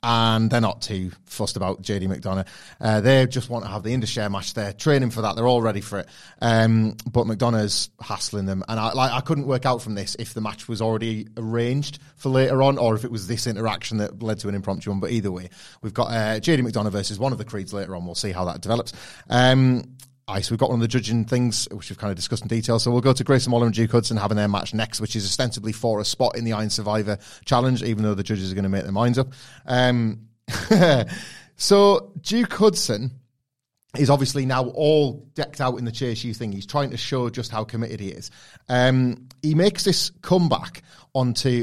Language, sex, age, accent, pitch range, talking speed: English, male, 30-49, British, 110-135 Hz, 235 wpm